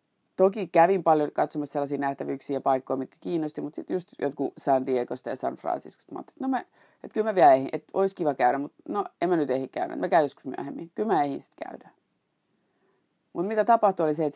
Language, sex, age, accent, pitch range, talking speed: Finnish, female, 30-49, native, 140-175 Hz, 205 wpm